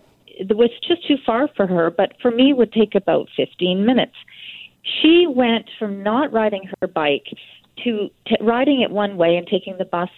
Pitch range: 185-240 Hz